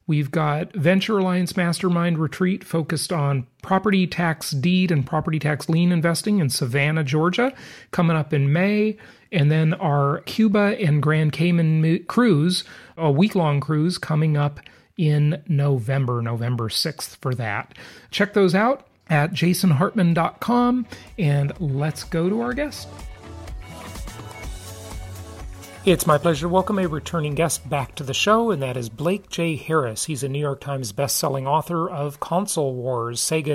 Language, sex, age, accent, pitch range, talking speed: English, male, 40-59, American, 140-175 Hz, 150 wpm